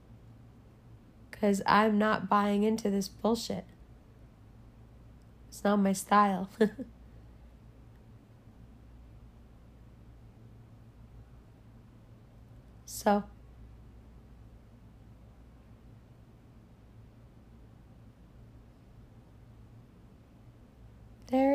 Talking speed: 35 wpm